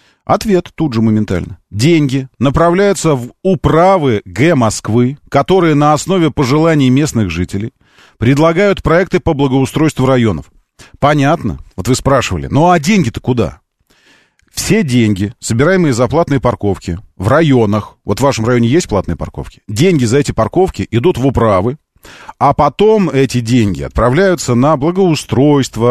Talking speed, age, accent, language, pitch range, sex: 135 wpm, 40-59, native, Russian, 105-155 Hz, male